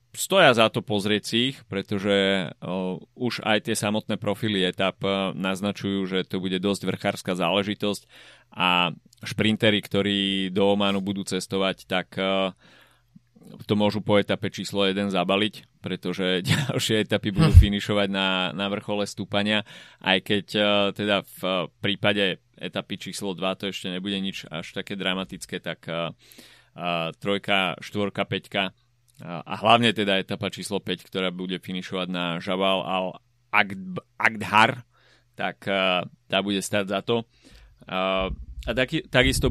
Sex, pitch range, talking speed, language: male, 95-115 Hz, 140 wpm, Slovak